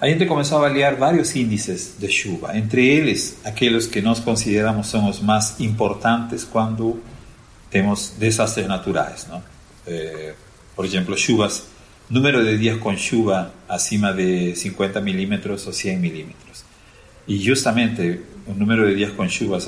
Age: 40-59